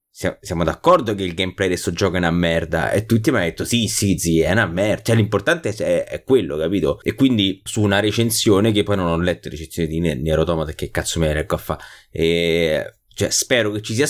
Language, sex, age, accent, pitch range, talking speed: Italian, male, 20-39, native, 90-115 Hz, 225 wpm